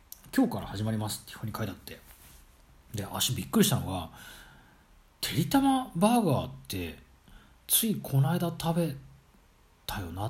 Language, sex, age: Japanese, male, 40-59